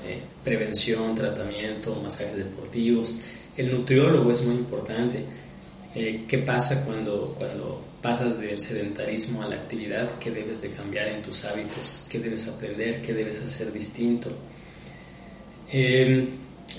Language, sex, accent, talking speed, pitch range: Spanish, male, Mexican, 130 wpm, 115-135 Hz